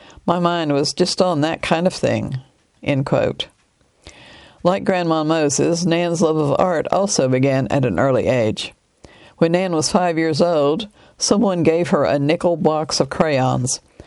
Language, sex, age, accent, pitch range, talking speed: English, female, 60-79, American, 145-175 Hz, 160 wpm